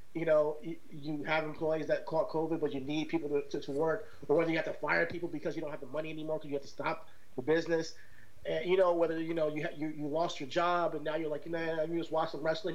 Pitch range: 160-200 Hz